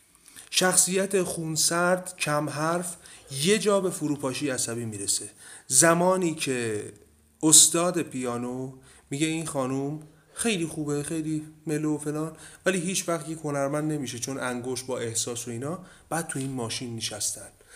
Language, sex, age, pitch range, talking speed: Persian, male, 30-49, 125-180 Hz, 125 wpm